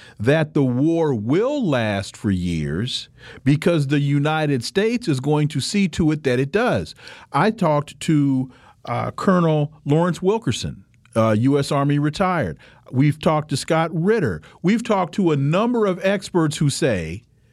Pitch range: 125-175 Hz